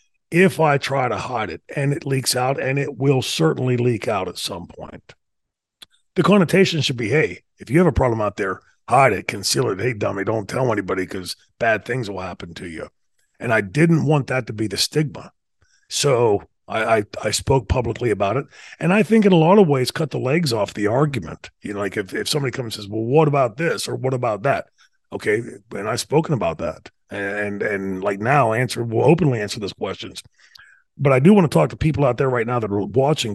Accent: American